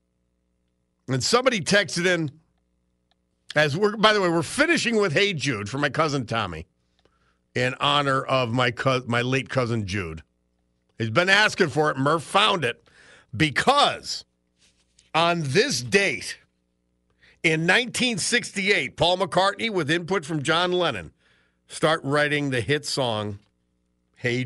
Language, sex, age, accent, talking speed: English, male, 50-69, American, 130 wpm